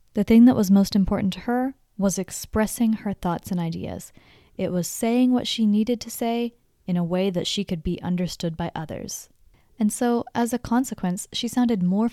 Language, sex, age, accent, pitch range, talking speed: English, female, 10-29, American, 180-230 Hz, 200 wpm